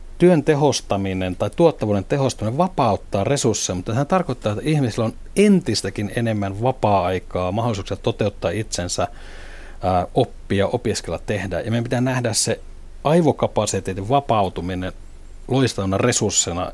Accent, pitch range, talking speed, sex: native, 95-125 Hz, 110 wpm, male